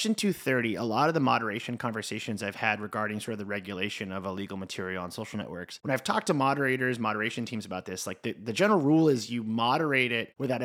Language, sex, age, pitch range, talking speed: English, male, 30-49, 105-140 Hz, 225 wpm